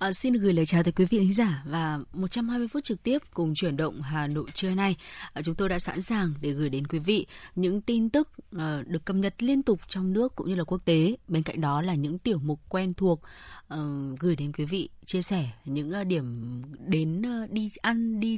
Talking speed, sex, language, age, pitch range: 230 wpm, female, Vietnamese, 20-39, 155-205 Hz